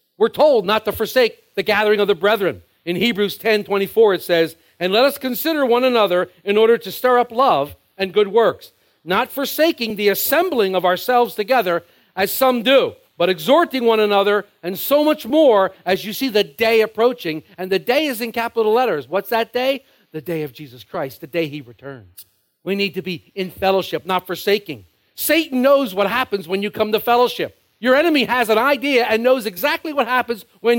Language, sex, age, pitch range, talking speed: English, male, 50-69, 170-270 Hz, 200 wpm